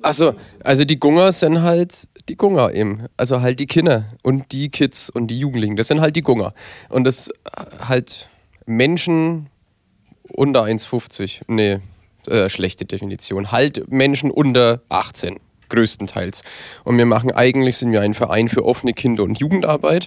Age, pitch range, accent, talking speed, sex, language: 30-49, 105-135 Hz, German, 150 wpm, male, German